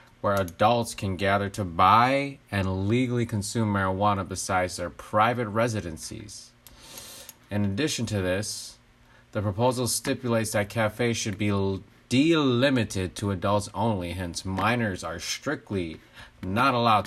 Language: English